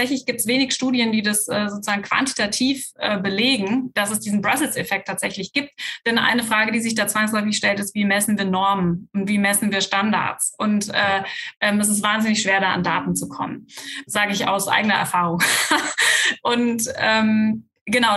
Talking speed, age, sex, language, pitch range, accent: 190 wpm, 20-39, female, German, 205-240 Hz, German